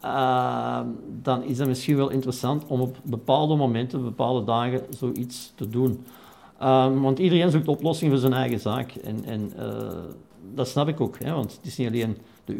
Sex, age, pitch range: male, 50-69, 120-150 Hz